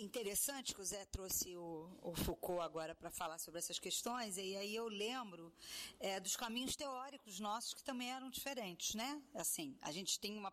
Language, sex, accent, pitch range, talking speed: Portuguese, female, Brazilian, 180-235 Hz, 190 wpm